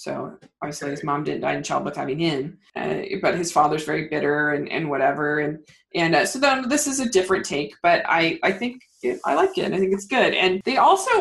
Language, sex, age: English, female, 20-39